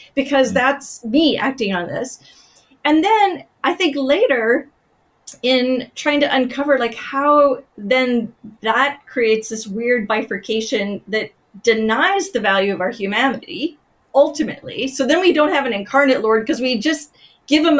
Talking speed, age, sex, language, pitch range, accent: 150 wpm, 30-49, female, English, 235-310 Hz, American